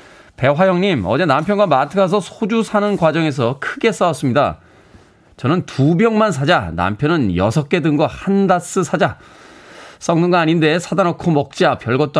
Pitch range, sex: 125-185 Hz, male